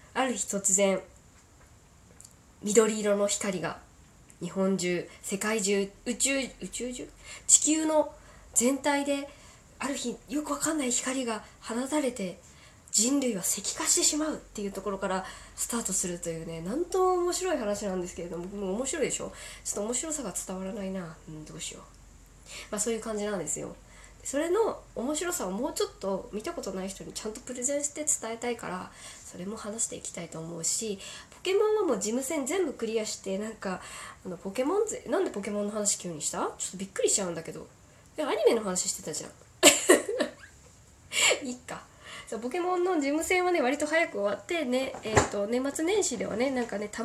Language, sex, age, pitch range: Japanese, female, 20-39, 200-305 Hz